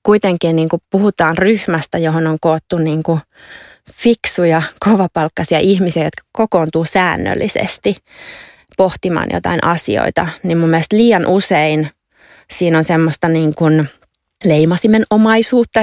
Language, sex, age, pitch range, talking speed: Finnish, female, 20-39, 160-185 Hz, 110 wpm